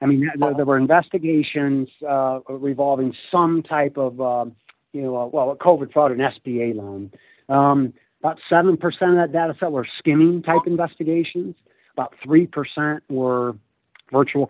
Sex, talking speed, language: male, 150 wpm, English